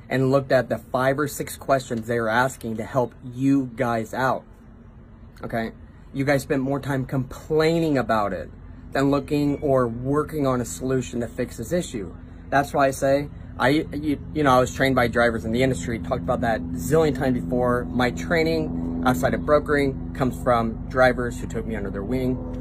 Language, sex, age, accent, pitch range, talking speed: English, male, 30-49, American, 120-145 Hz, 195 wpm